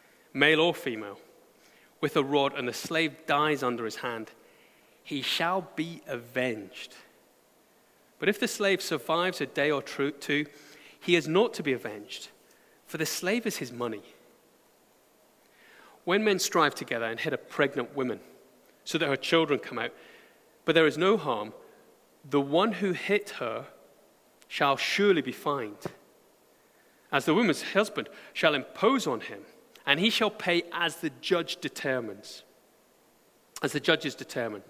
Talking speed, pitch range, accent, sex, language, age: 150 wpm, 140-175 Hz, British, male, English, 30-49